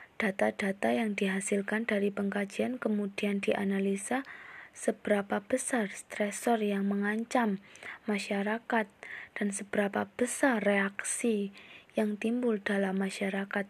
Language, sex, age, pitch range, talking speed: Indonesian, female, 20-39, 200-230 Hz, 90 wpm